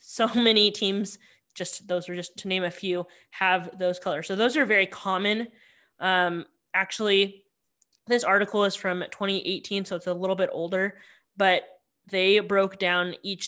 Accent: American